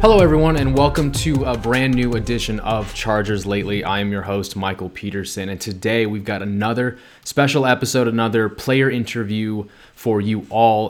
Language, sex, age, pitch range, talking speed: English, male, 20-39, 100-120 Hz, 170 wpm